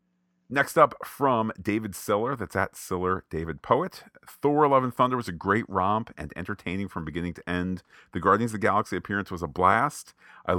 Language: English